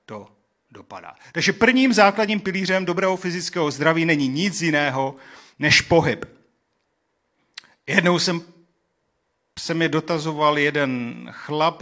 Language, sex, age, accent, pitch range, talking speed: Czech, male, 40-59, native, 140-170 Hz, 105 wpm